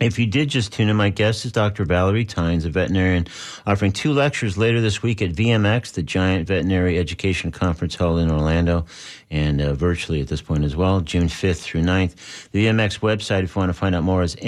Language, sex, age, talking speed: English, male, 50-69, 220 wpm